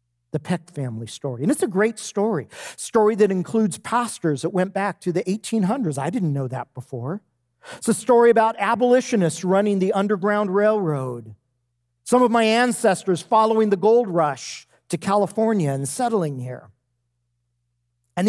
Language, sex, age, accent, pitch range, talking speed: English, male, 50-69, American, 120-195 Hz, 155 wpm